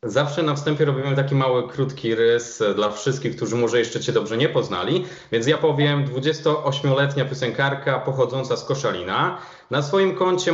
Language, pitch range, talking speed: Polish, 130-165 Hz, 160 wpm